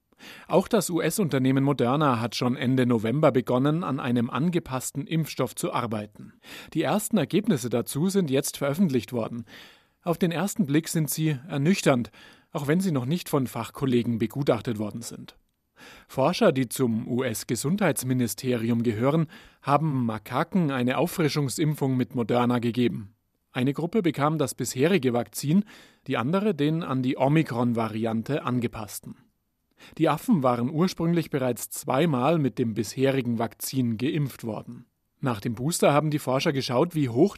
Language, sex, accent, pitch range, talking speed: German, male, German, 120-160 Hz, 140 wpm